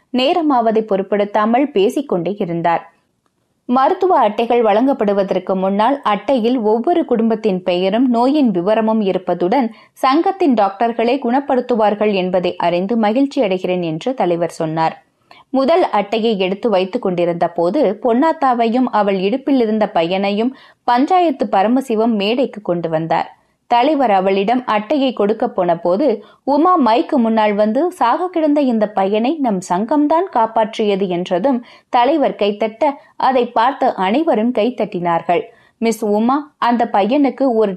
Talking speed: 85 wpm